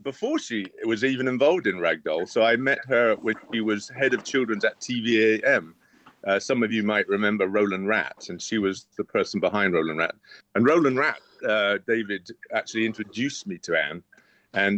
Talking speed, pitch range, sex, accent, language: 185 wpm, 100-130 Hz, male, British, English